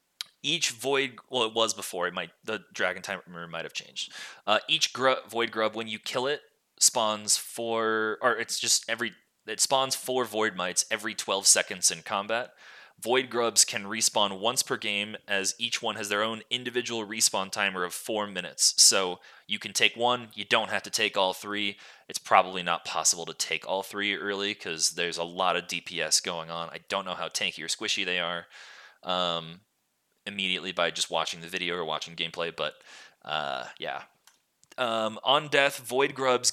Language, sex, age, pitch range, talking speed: English, male, 20-39, 95-120 Hz, 185 wpm